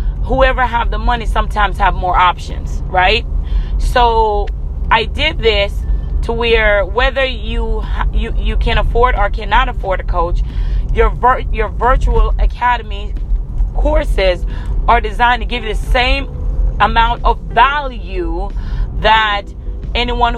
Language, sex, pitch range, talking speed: English, female, 180-260 Hz, 125 wpm